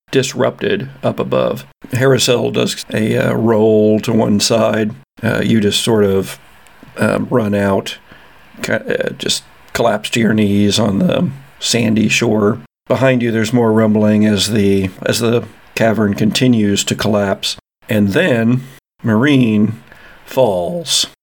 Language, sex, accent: English, male, American